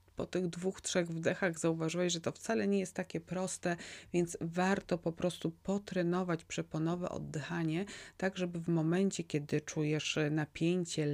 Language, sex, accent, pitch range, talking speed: Polish, female, native, 150-185 Hz, 145 wpm